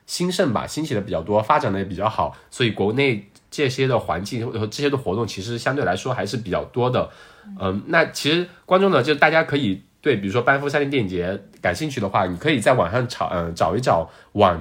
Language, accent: Chinese, native